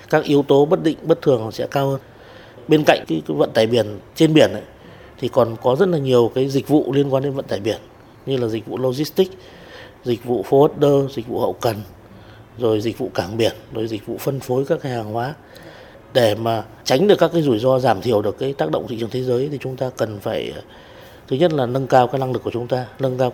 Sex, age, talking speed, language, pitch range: male, 20-39, 245 wpm, Vietnamese, 115-140 Hz